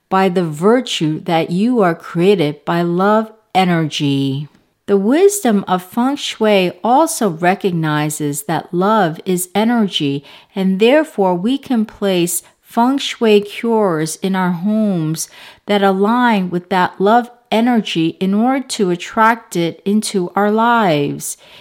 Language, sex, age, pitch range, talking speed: English, female, 50-69, 170-230 Hz, 130 wpm